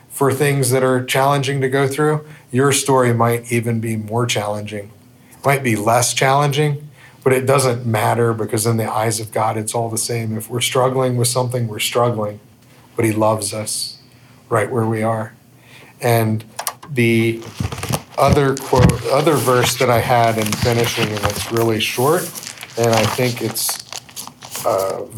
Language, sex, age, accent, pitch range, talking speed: English, male, 40-59, American, 115-130 Hz, 165 wpm